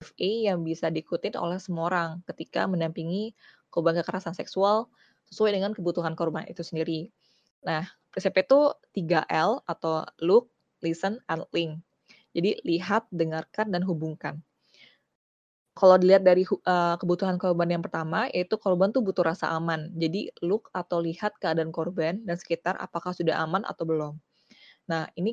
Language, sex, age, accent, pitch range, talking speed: Indonesian, female, 20-39, native, 160-185 Hz, 140 wpm